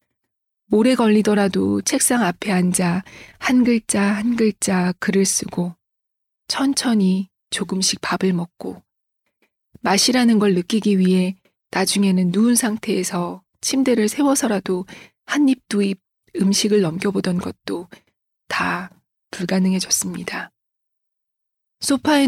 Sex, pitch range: female, 185-230 Hz